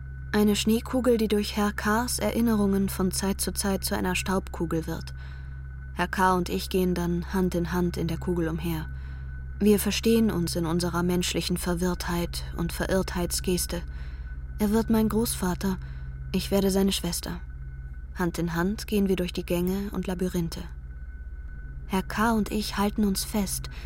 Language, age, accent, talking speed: German, 20-39, German, 155 wpm